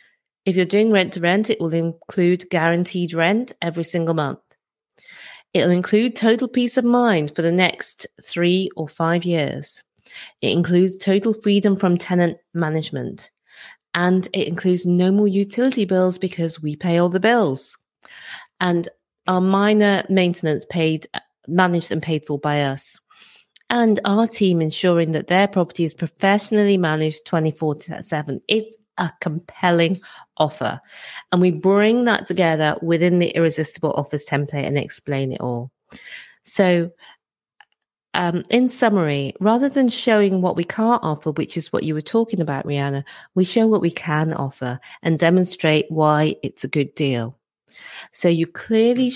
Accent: British